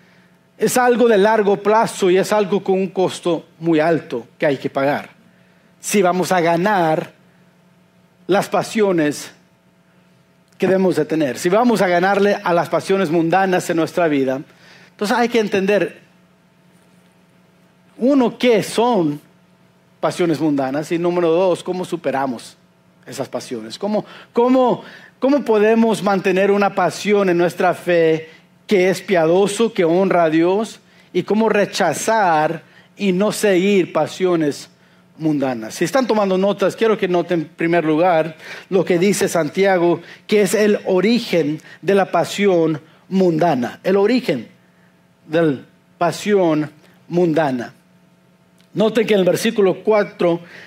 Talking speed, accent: 135 wpm, Mexican